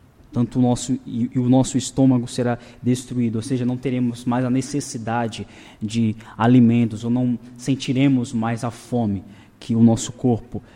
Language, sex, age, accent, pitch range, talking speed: Portuguese, male, 20-39, Brazilian, 110-125 Hz, 160 wpm